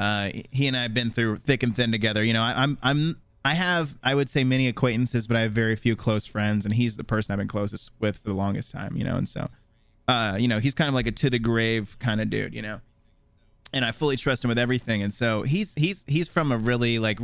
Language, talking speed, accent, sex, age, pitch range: English, 270 wpm, American, male, 20-39, 110-130 Hz